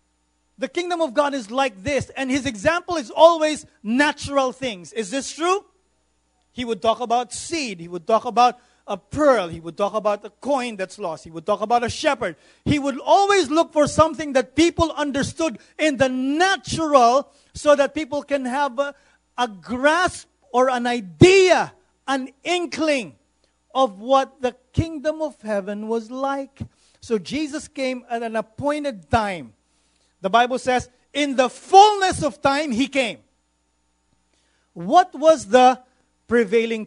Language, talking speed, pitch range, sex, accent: English, 155 wpm, 165-275 Hz, male, Filipino